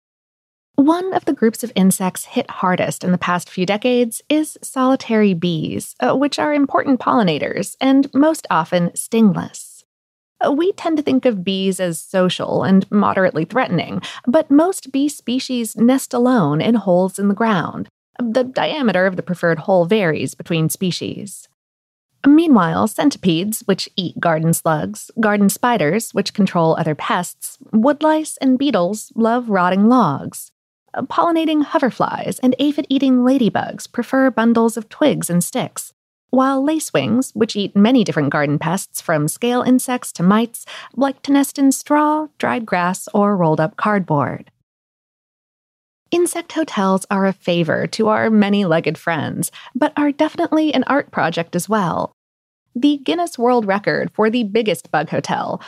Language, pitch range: English, 180-265 Hz